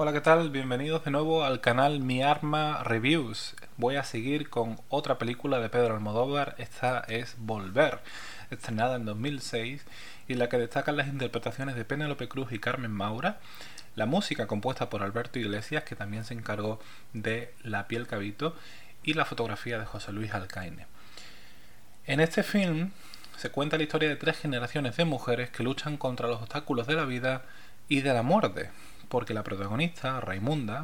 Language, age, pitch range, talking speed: Spanish, 20-39, 110-145 Hz, 170 wpm